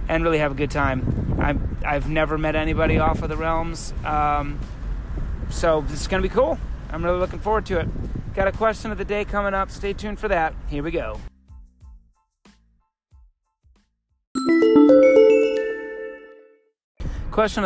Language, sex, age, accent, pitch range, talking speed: English, male, 30-49, American, 140-180 Hz, 145 wpm